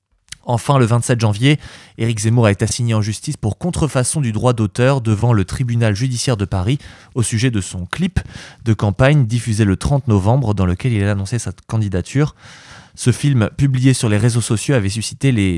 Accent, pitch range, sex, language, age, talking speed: French, 105-130 Hz, male, French, 20-39, 195 wpm